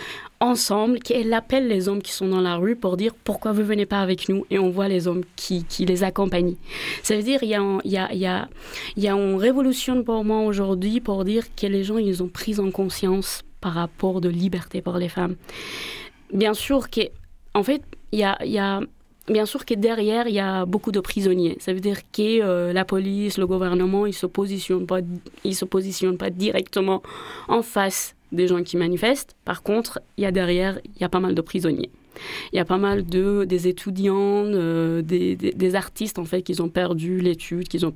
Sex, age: female, 20-39